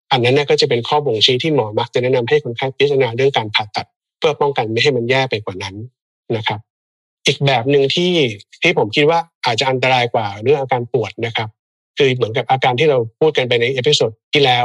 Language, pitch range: Thai, 115-145 Hz